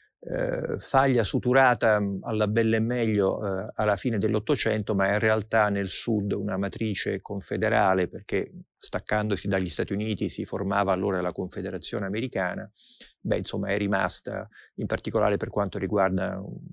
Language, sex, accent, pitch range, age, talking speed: Italian, male, native, 95-115 Hz, 50-69, 145 wpm